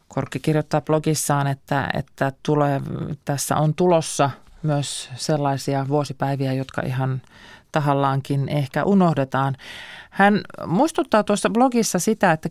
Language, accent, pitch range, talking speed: Finnish, native, 145-190 Hz, 110 wpm